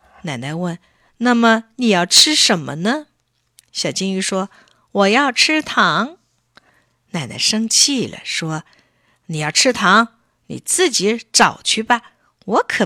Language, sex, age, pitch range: Chinese, female, 50-69, 175-280 Hz